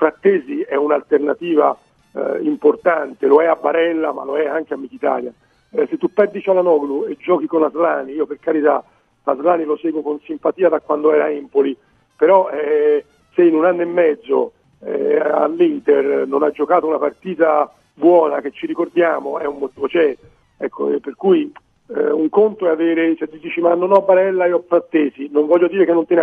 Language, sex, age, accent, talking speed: Italian, male, 50-69, native, 200 wpm